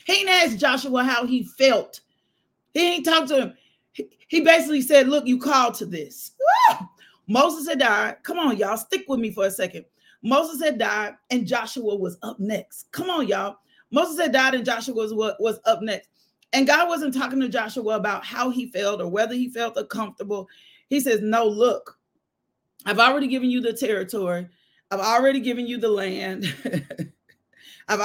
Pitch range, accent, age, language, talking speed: 220-280 Hz, American, 40-59, English, 185 wpm